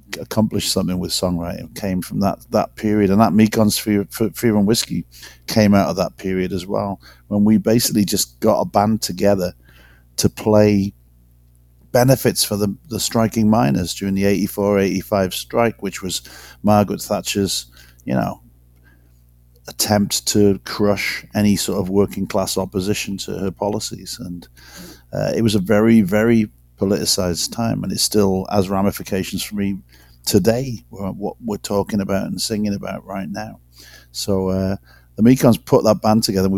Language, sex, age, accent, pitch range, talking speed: English, male, 50-69, British, 90-105 Hz, 155 wpm